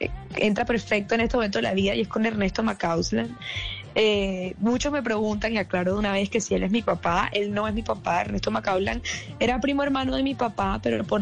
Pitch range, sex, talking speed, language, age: 195-240 Hz, female, 230 wpm, Spanish, 10-29